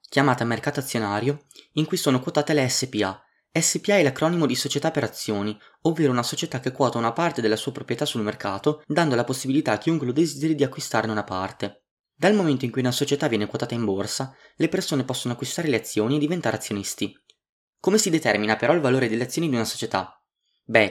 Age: 20-39